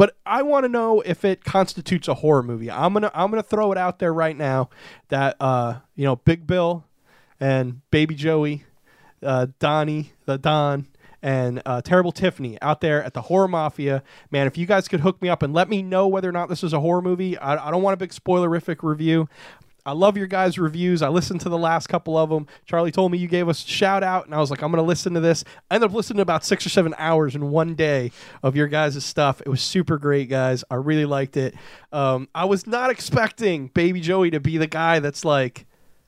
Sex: male